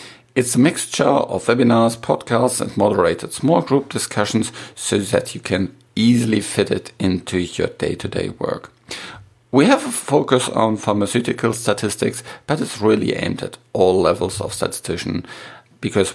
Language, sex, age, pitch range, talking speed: English, male, 50-69, 100-125 Hz, 145 wpm